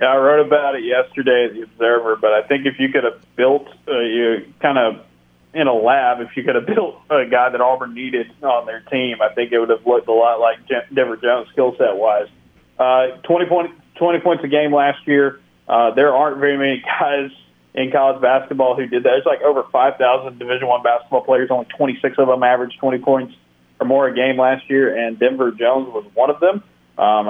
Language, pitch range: English, 120-135 Hz